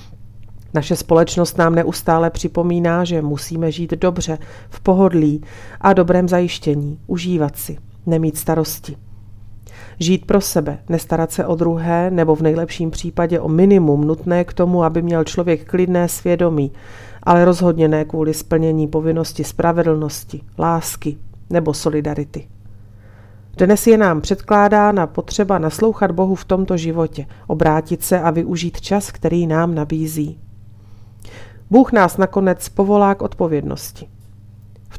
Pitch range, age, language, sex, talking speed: 140-180 Hz, 40-59, Slovak, female, 125 wpm